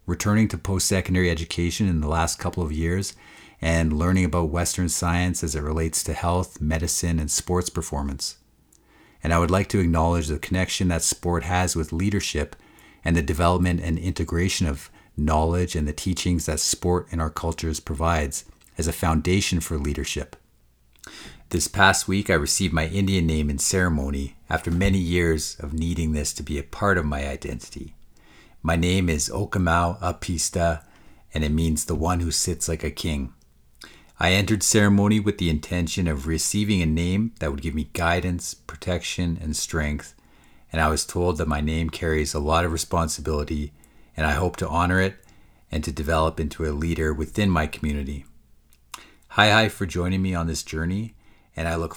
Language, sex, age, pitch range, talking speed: English, male, 50-69, 75-90 Hz, 175 wpm